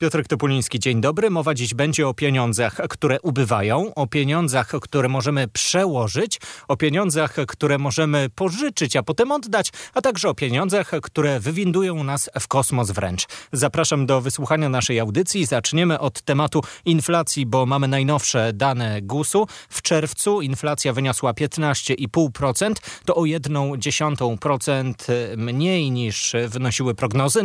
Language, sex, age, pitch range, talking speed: Polish, male, 30-49, 120-155 Hz, 130 wpm